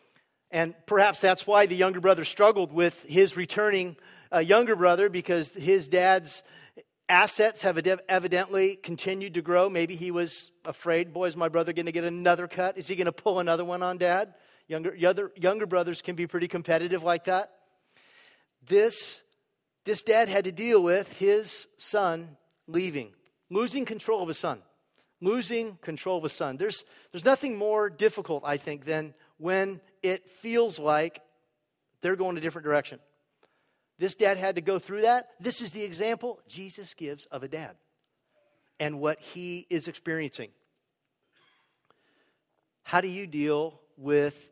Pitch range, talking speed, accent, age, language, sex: 155-190 Hz, 160 wpm, American, 40-59, English, male